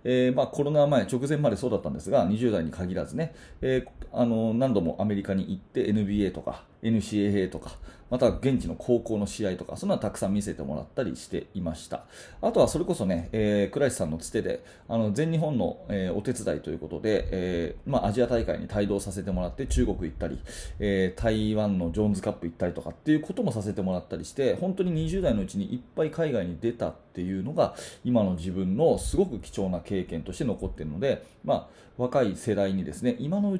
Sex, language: male, Japanese